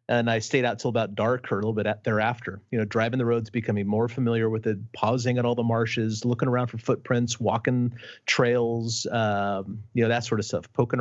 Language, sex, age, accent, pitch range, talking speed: English, male, 30-49, American, 105-120 Hz, 220 wpm